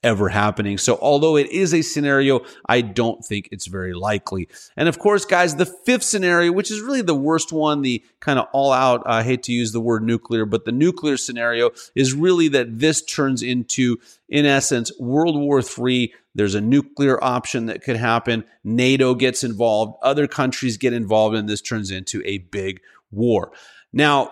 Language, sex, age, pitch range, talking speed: English, male, 30-49, 115-155 Hz, 190 wpm